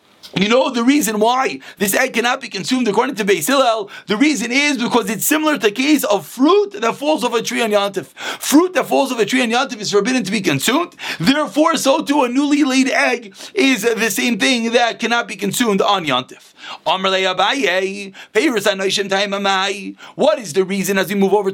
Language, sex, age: English, male, 30-49